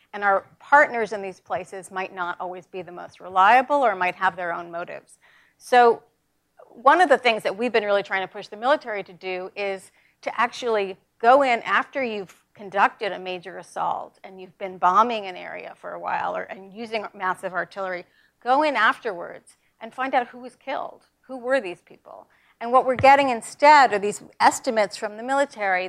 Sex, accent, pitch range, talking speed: female, American, 185-245 Hz, 195 wpm